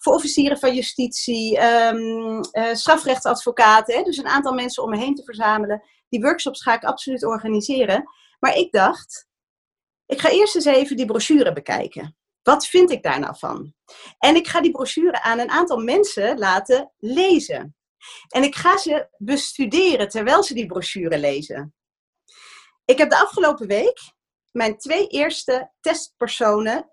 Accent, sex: Dutch, female